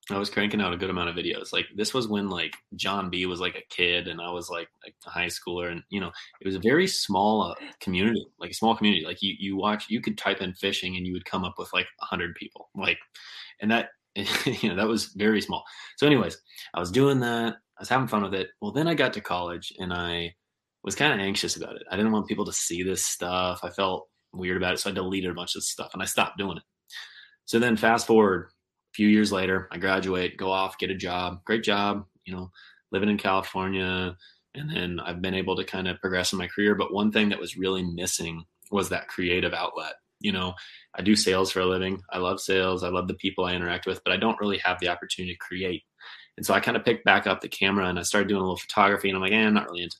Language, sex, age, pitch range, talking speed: English, male, 20-39, 90-105 Hz, 260 wpm